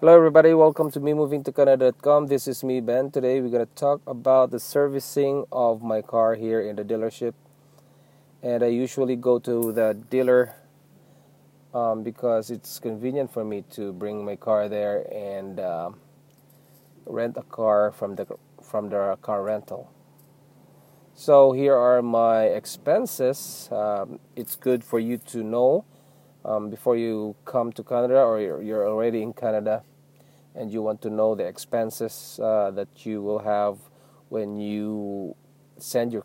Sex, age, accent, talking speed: male, 20-39, Filipino, 155 wpm